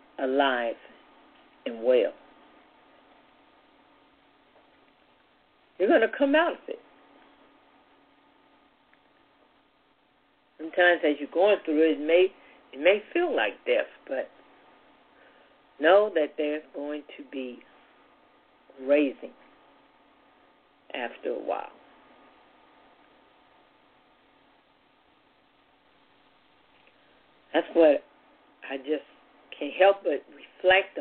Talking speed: 80 wpm